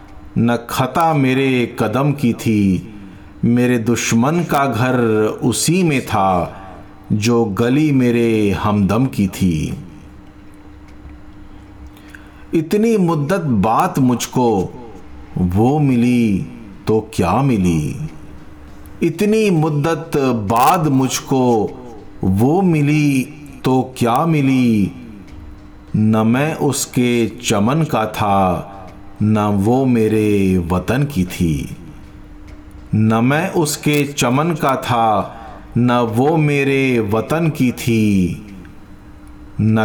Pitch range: 100-135 Hz